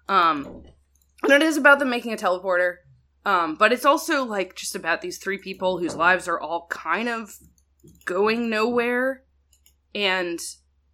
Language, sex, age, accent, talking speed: English, female, 20-39, American, 155 wpm